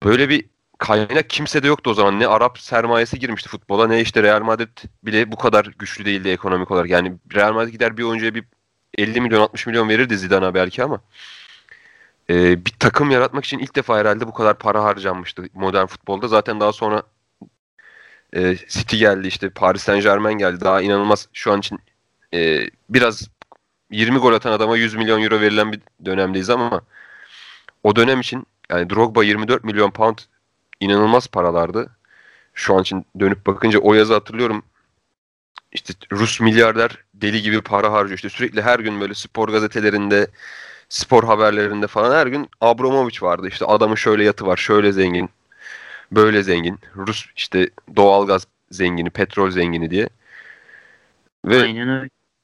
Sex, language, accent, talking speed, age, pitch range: male, Turkish, native, 155 wpm, 30-49, 95-115 Hz